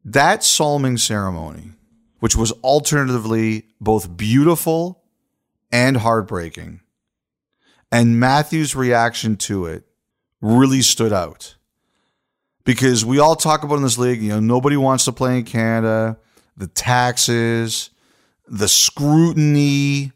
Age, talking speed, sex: 40-59, 115 wpm, male